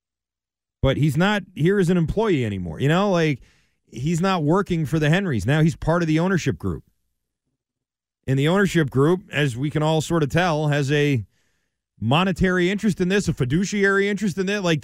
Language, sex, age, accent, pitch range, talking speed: English, male, 30-49, American, 135-175 Hz, 190 wpm